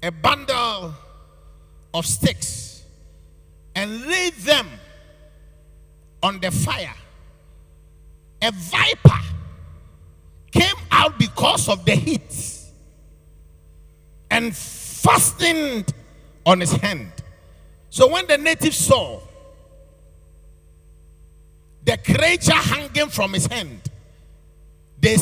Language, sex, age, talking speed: English, male, 50-69, 85 wpm